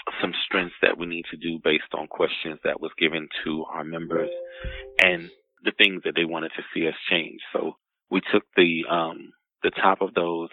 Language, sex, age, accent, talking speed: English, male, 30-49, American, 205 wpm